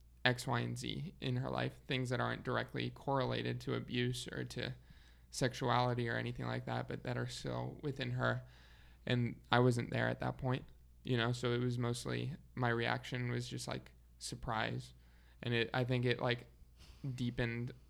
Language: English